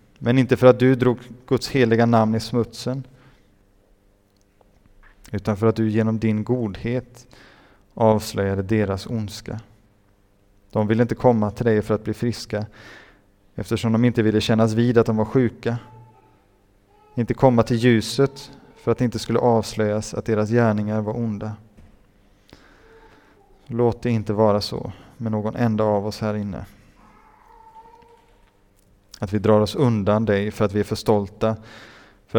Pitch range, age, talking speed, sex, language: 105-120 Hz, 20-39, 150 wpm, male, Swedish